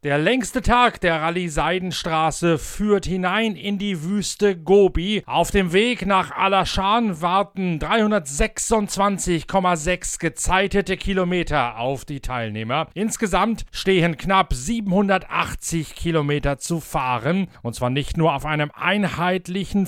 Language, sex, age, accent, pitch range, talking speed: German, male, 40-59, German, 150-195 Hz, 115 wpm